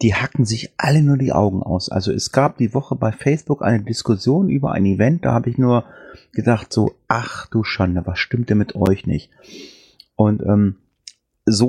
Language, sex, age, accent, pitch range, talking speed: German, male, 30-49, German, 105-145 Hz, 195 wpm